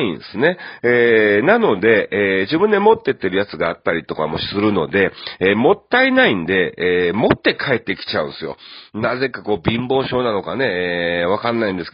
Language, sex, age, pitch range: Japanese, male, 40-59, 100-145 Hz